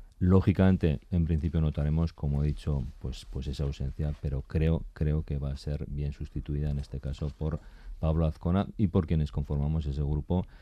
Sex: male